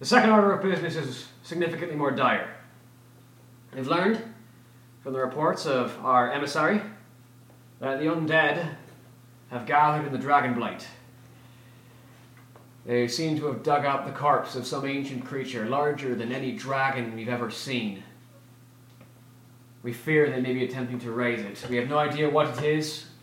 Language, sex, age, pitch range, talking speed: English, male, 30-49, 120-135 Hz, 160 wpm